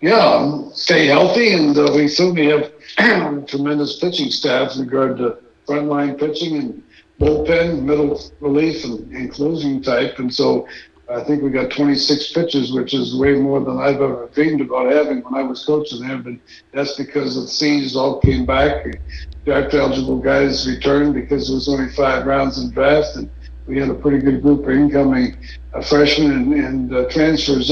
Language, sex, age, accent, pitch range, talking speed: English, male, 60-79, American, 135-155 Hz, 175 wpm